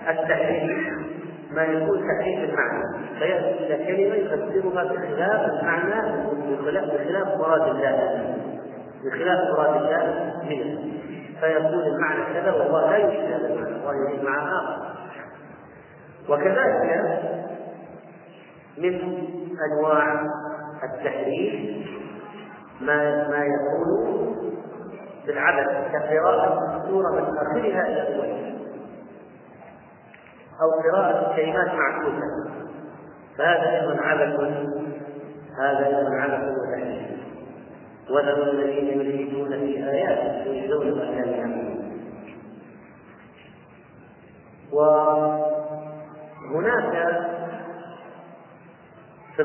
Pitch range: 145-170 Hz